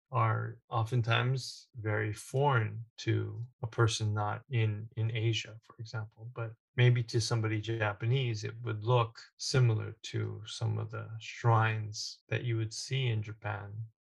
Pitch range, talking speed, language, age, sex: 110-120 Hz, 140 wpm, English, 20-39, male